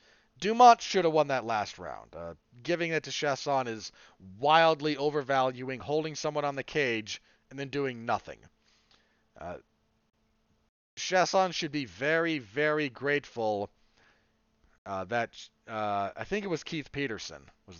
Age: 40-59